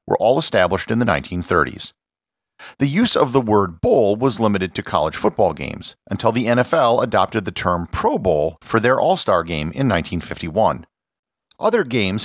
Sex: male